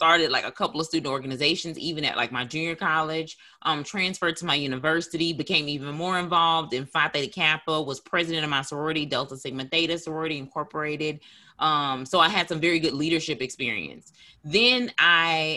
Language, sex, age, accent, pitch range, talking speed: English, female, 30-49, American, 155-190 Hz, 180 wpm